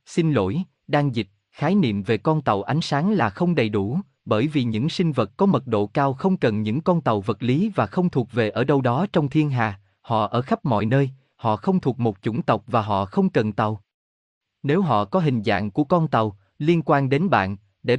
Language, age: Vietnamese, 20-39